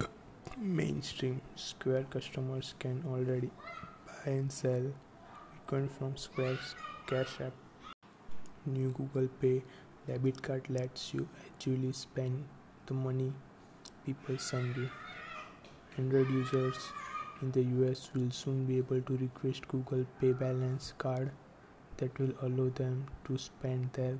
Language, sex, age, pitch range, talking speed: English, male, 20-39, 130-135 Hz, 120 wpm